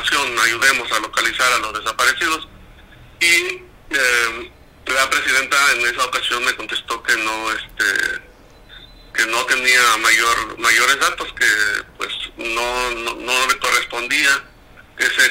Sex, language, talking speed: male, Spanish, 125 wpm